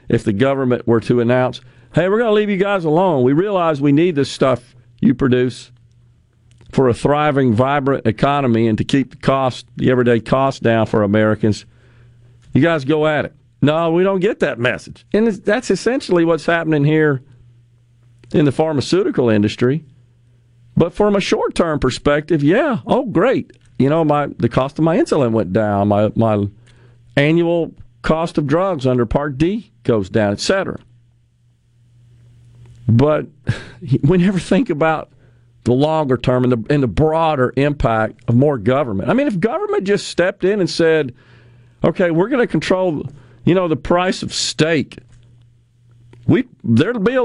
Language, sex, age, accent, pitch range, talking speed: English, male, 50-69, American, 120-170 Hz, 165 wpm